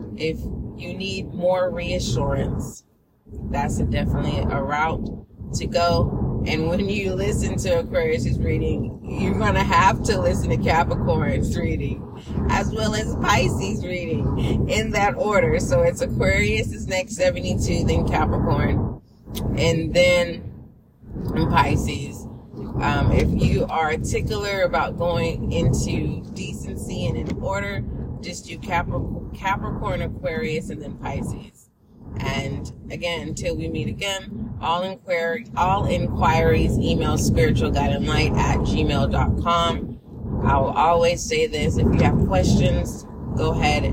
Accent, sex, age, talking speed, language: American, female, 30-49, 125 wpm, English